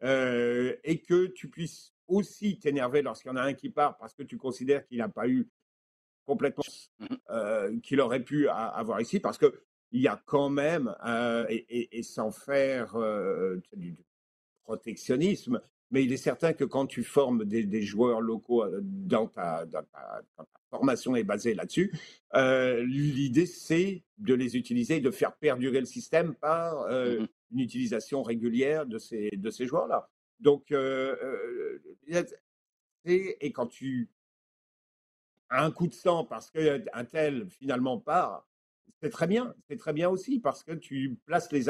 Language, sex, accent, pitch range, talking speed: French, male, French, 125-180 Hz, 170 wpm